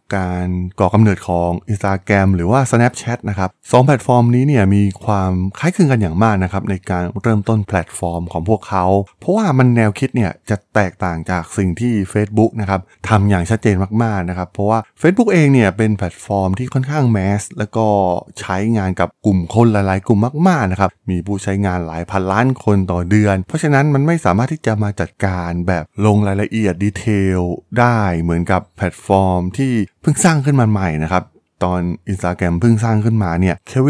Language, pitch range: Thai, 90-115 Hz